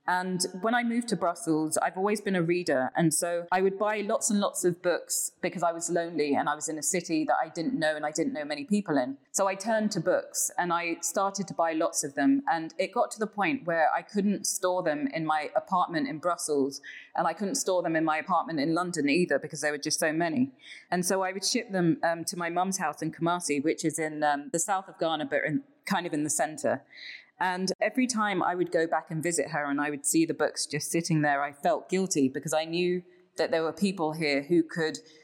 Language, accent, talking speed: English, British, 250 wpm